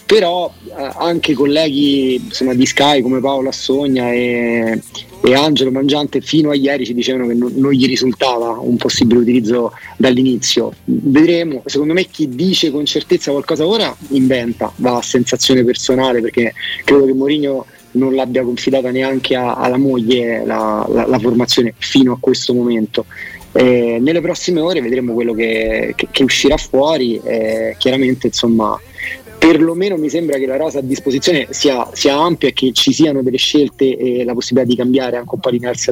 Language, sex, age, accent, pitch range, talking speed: Italian, male, 30-49, native, 125-140 Hz, 165 wpm